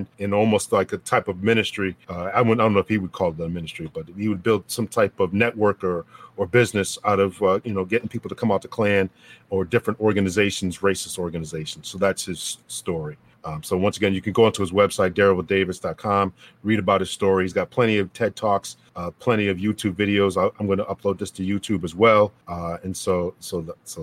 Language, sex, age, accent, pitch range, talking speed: English, male, 40-59, American, 95-115 Hz, 230 wpm